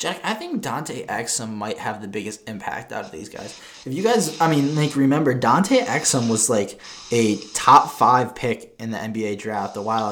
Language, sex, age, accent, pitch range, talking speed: English, male, 20-39, American, 115-140 Hz, 195 wpm